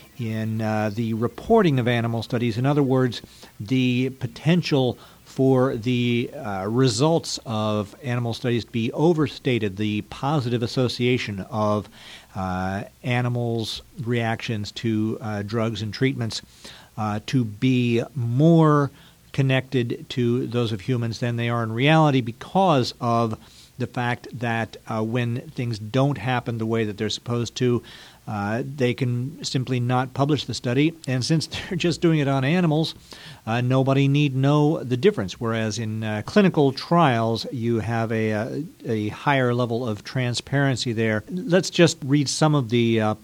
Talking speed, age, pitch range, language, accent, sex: 150 wpm, 50-69, 115-140 Hz, English, American, male